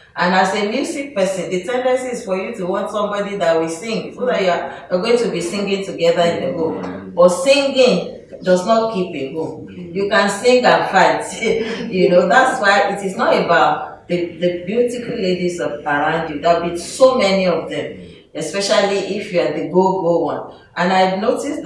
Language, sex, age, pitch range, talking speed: English, female, 40-59, 160-195 Hz, 195 wpm